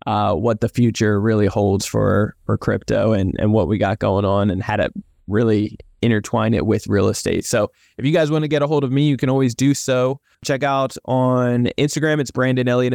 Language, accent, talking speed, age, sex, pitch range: English, American, 220 wpm, 20-39, male, 115-130 Hz